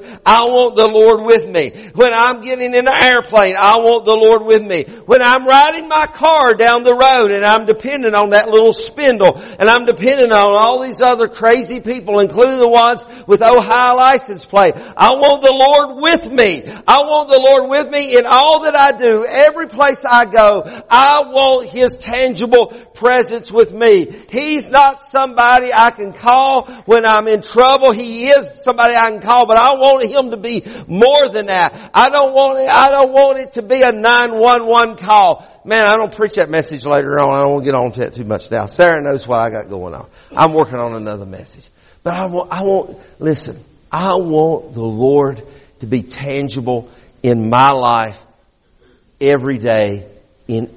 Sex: male